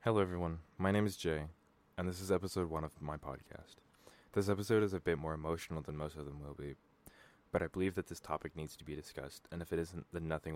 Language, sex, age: English, male, 20-39